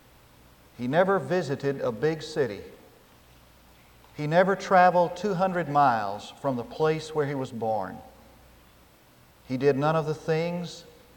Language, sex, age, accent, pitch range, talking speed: English, male, 50-69, American, 115-180 Hz, 130 wpm